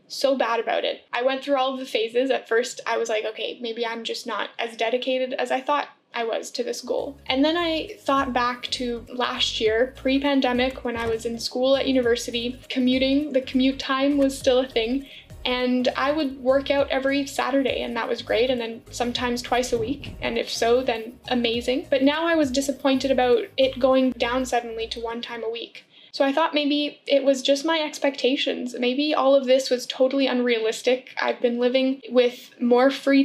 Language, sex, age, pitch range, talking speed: English, female, 10-29, 240-275 Hz, 205 wpm